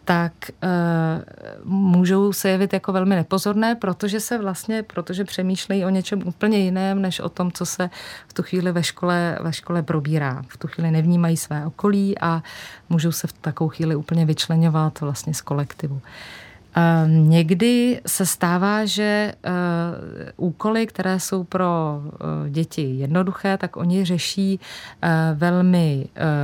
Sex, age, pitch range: female, 30-49, 160-185 Hz